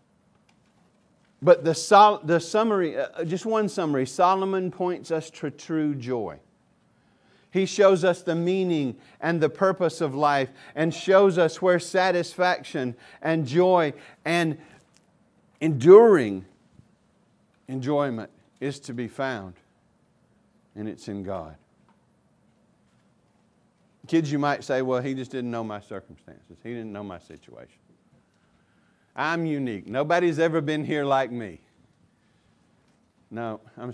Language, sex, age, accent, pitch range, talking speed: English, male, 50-69, American, 115-170 Hz, 120 wpm